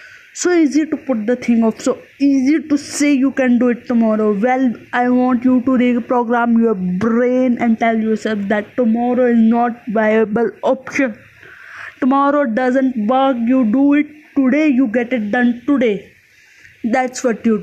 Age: 20-39